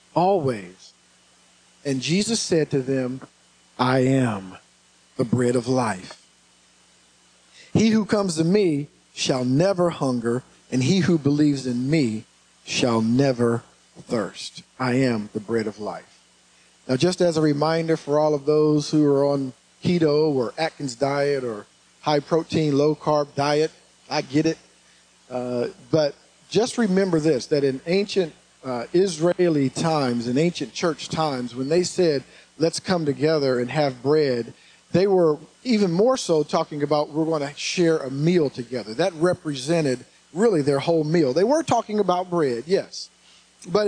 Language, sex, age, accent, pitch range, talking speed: English, male, 50-69, American, 130-180 Hz, 150 wpm